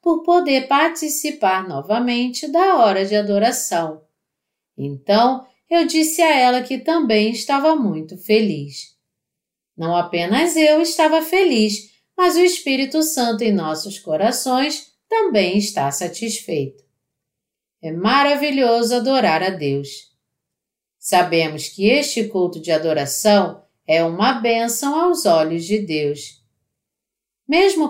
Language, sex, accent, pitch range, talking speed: Portuguese, female, Brazilian, 170-290 Hz, 110 wpm